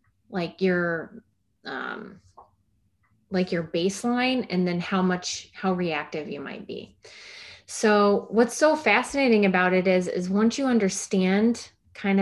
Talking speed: 135 wpm